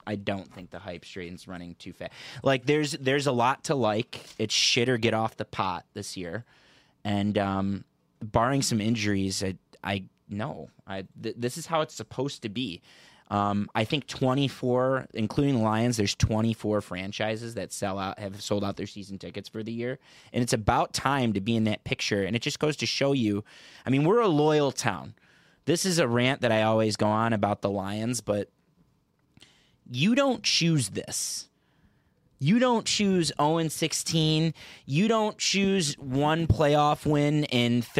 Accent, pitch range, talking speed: American, 110-145 Hz, 180 wpm